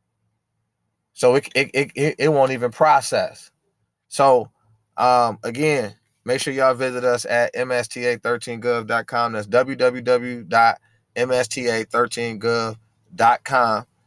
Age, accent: 20-39, American